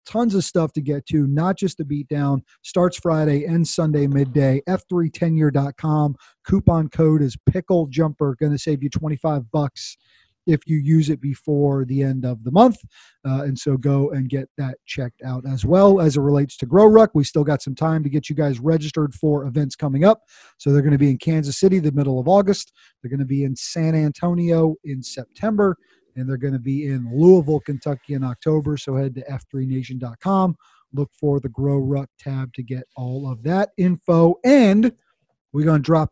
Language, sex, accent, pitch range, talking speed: English, male, American, 140-170 Hz, 200 wpm